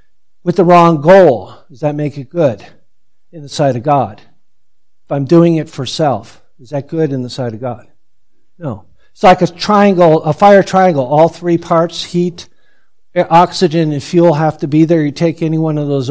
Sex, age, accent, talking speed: male, 50-69, American, 200 wpm